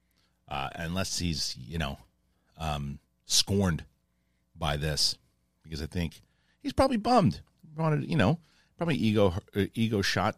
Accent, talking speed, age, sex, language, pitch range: American, 140 wpm, 40-59, male, English, 80-115 Hz